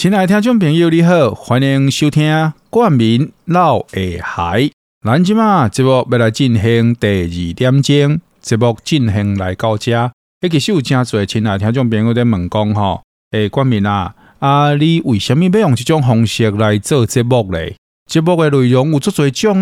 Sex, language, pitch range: male, Chinese, 110-155 Hz